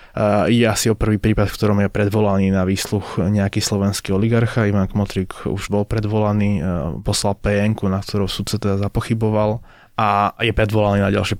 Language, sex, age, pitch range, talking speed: Slovak, male, 20-39, 95-110 Hz, 175 wpm